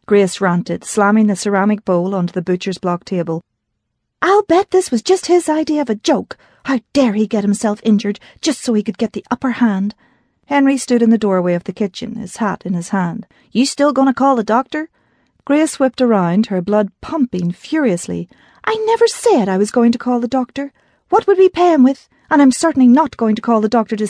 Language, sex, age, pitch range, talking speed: English, female, 40-59, 190-260 Hz, 220 wpm